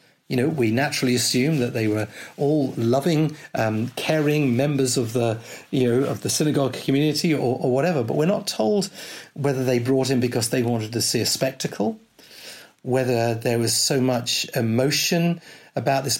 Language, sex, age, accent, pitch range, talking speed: English, male, 40-59, British, 125-155 Hz, 175 wpm